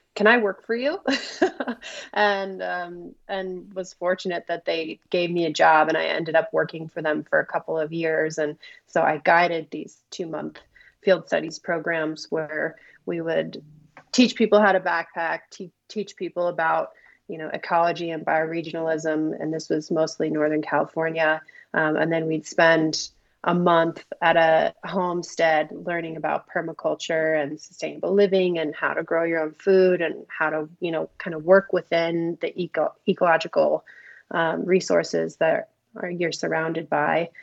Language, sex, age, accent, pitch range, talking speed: English, female, 30-49, American, 160-185 Hz, 160 wpm